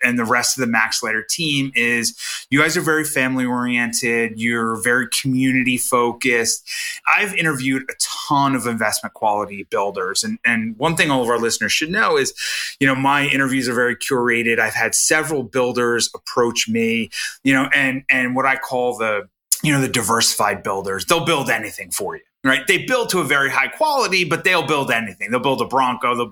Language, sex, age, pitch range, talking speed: English, male, 30-49, 115-140 Hz, 195 wpm